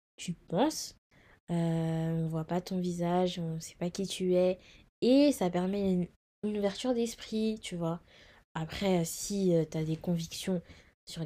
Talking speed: 165 wpm